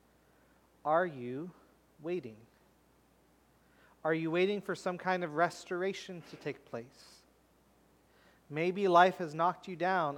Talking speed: 120 wpm